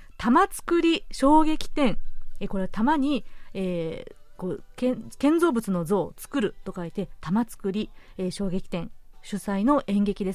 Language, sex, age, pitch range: Japanese, female, 40-59, 200-285 Hz